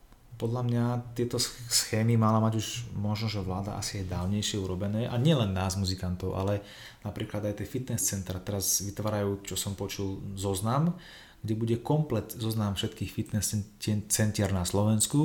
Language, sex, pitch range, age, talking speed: Slovak, male, 95-115 Hz, 30-49, 155 wpm